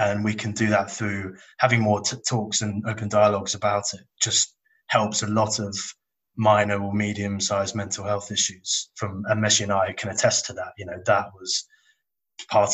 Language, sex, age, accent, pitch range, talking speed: English, male, 20-39, British, 100-110 Hz, 190 wpm